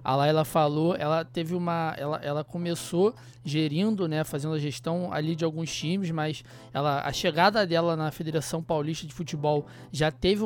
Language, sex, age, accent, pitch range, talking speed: Portuguese, male, 20-39, Brazilian, 145-175 Hz, 165 wpm